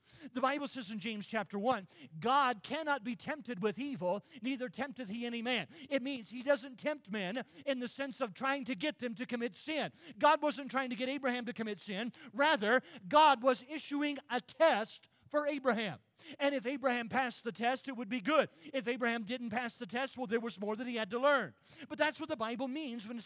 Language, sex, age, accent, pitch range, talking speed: English, male, 40-59, American, 205-275 Hz, 220 wpm